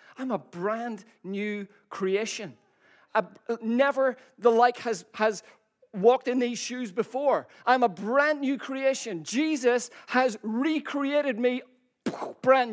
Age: 40-59